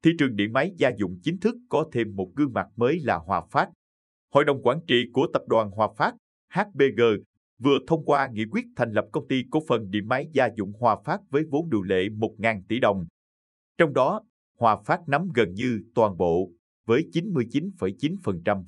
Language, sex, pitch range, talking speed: Vietnamese, male, 100-145 Hz, 200 wpm